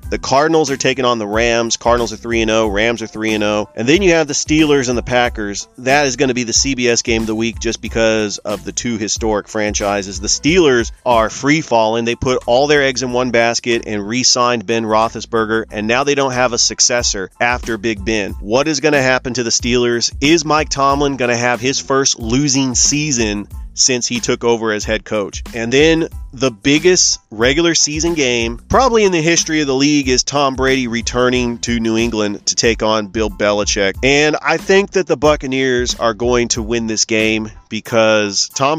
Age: 30-49